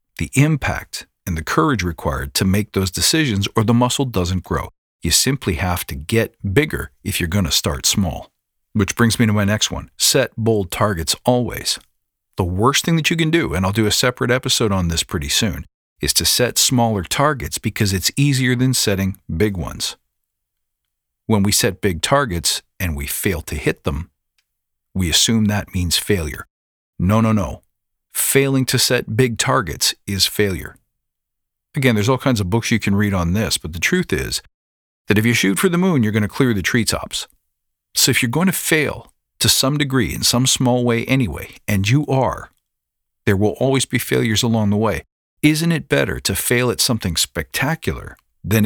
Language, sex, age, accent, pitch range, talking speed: English, male, 50-69, American, 95-125 Hz, 190 wpm